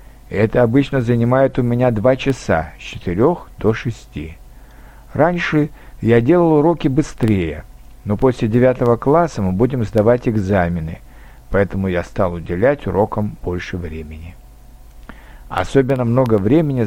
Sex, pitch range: male, 95-135 Hz